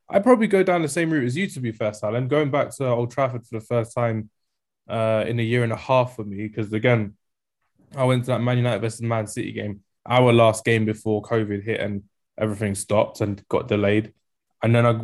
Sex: male